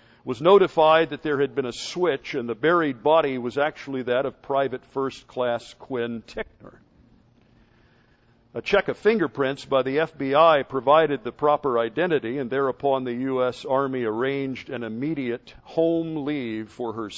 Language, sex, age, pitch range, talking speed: English, male, 50-69, 120-185 Hz, 155 wpm